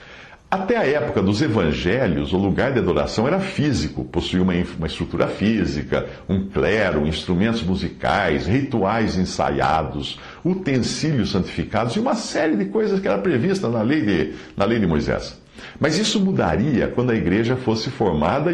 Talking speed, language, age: 150 wpm, Portuguese, 60-79